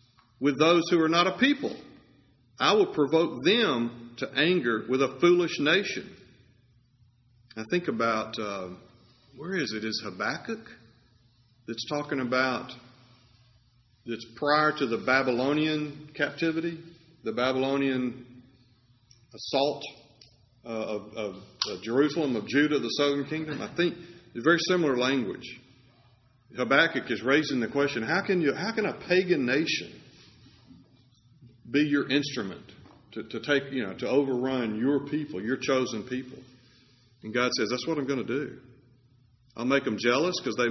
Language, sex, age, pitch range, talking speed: English, male, 50-69, 120-145 Hz, 145 wpm